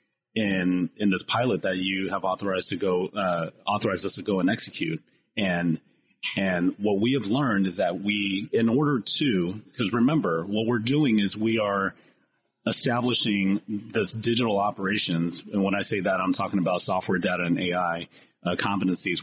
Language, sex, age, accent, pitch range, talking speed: English, male, 30-49, American, 95-110 Hz, 170 wpm